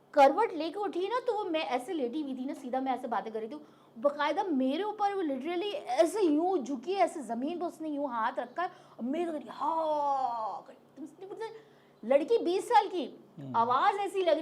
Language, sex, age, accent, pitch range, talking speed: Hindi, female, 20-39, native, 260-345 Hz, 185 wpm